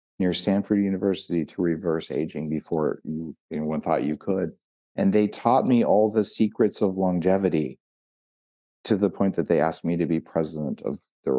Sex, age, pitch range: male, 50-69, 85-110 Hz